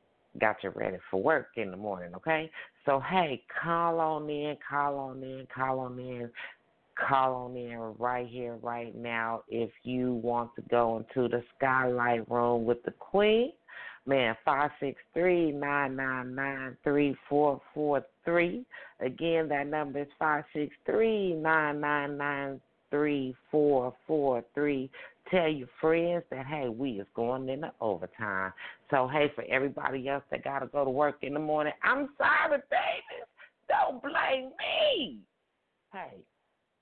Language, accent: English, American